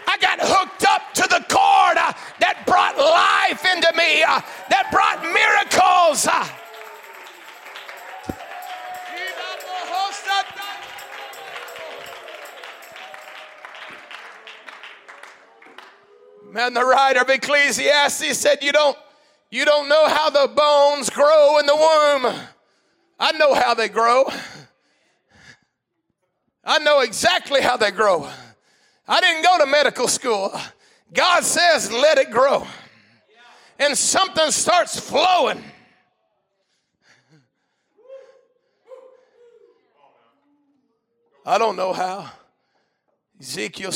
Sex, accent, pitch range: male, American, 220-360 Hz